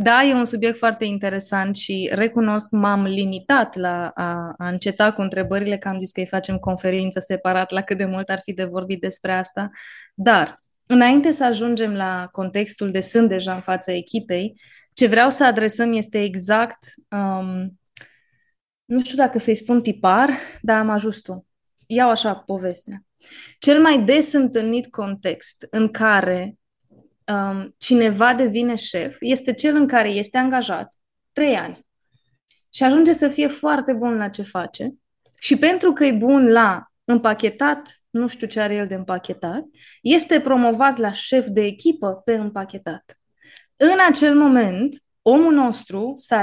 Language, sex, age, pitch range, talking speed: Romanian, female, 20-39, 195-250 Hz, 155 wpm